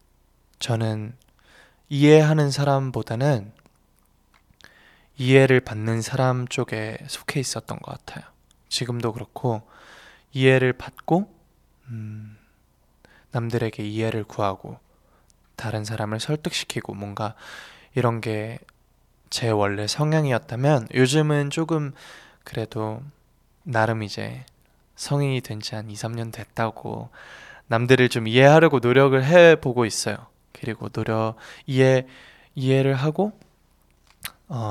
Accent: native